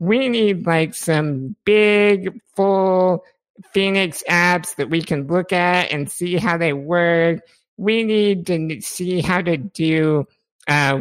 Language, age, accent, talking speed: English, 60-79, American, 140 wpm